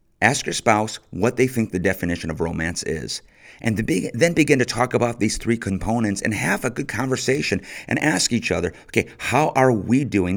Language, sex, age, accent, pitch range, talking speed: English, male, 50-69, American, 95-125 Hz, 195 wpm